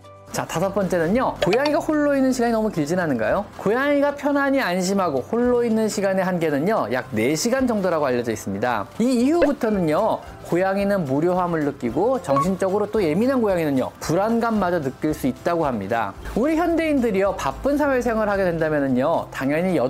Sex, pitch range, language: male, 150-245 Hz, Korean